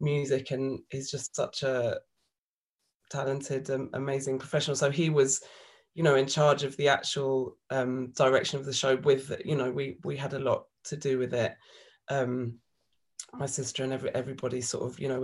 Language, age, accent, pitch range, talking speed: English, 20-39, British, 135-165 Hz, 185 wpm